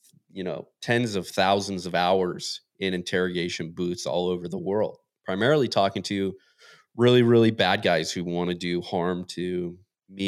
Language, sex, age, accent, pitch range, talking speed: English, male, 30-49, American, 95-120 Hz, 165 wpm